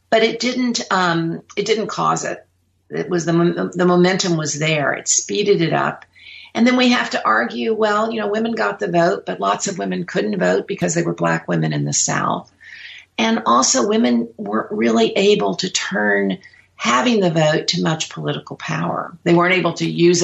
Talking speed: 195 wpm